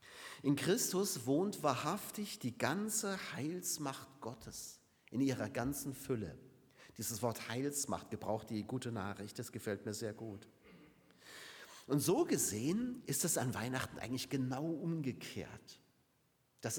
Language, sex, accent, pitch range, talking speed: German, male, German, 125-180 Hz, 125 wpm